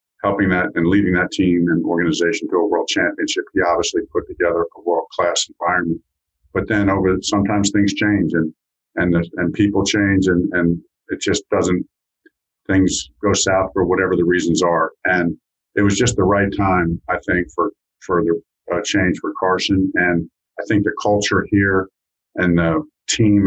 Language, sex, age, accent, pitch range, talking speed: English, male, 50-69, American, 85-100 Hz, 180 wpm